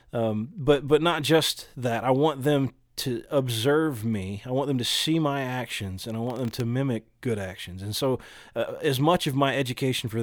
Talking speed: 210 wpm